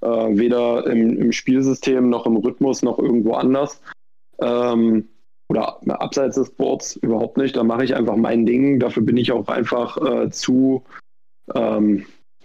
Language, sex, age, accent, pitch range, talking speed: German, male, 20-39, German, 115-135 Hz, 155 wpm